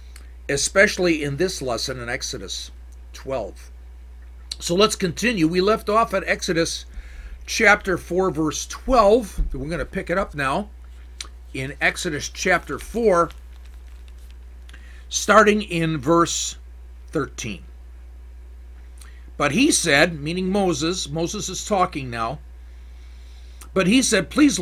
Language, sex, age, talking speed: English, male, 50-69, 115 wpm